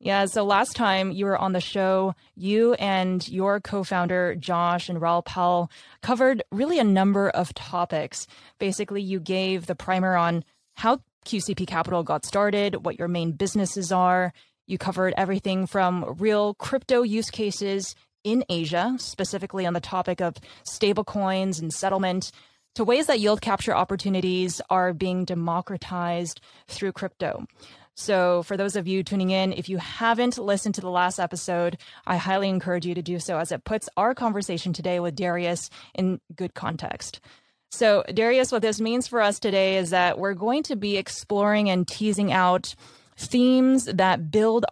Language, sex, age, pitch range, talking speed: English, female, 20-39, 180-210 Hz, 165 wpm